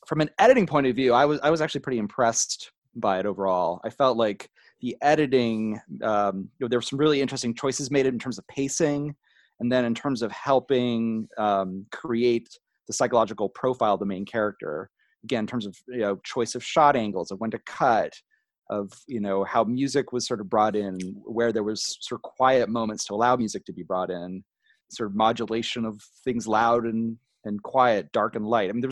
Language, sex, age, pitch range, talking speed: English, male, 30-49, 110-135 Hz, 215 wpm